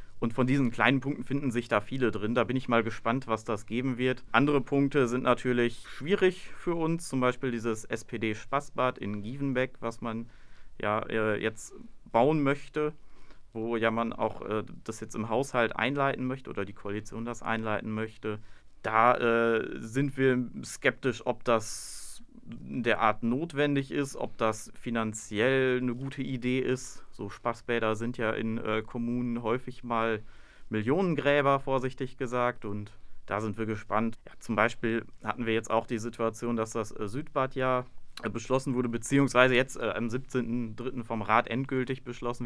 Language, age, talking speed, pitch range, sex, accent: German, 30-49, 165 wpm, 110-130 Hz, male, German